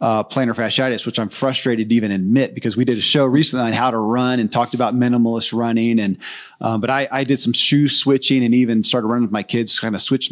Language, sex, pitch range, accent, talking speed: English, male, 115-140 Hz, American, 250 wpm